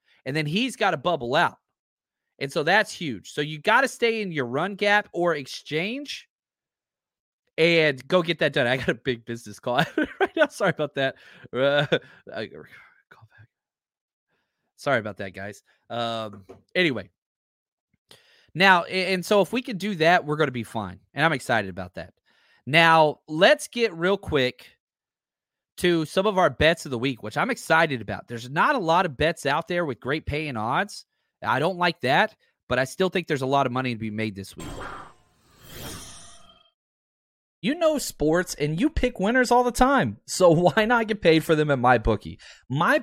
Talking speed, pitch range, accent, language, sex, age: 185 wpm, 125-190 Hz, American, English, male, 30-49